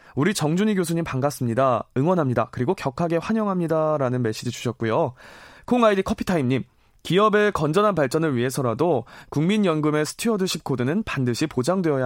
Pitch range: 130-200 Hz